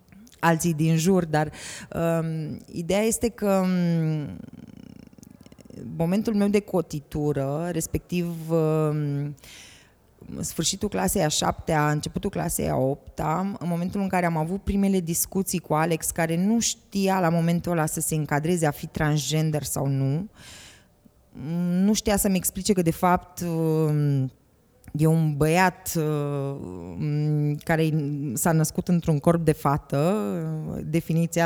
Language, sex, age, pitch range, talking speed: Romanian, female, 20-39, 150-185 Hz, 125 wpm